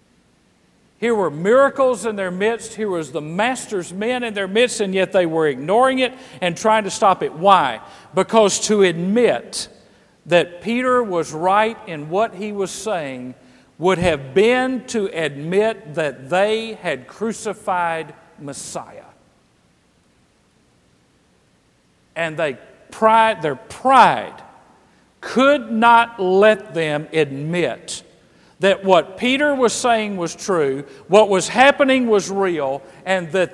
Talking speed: 130 wpm